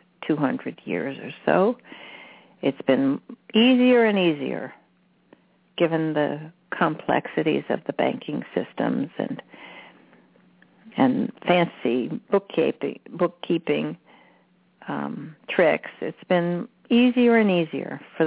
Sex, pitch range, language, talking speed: female, 155-220 Hz, English, 95 wpm